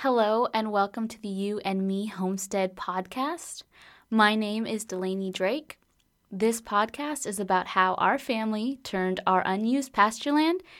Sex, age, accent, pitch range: female, 20-39, American, 185-225 Hz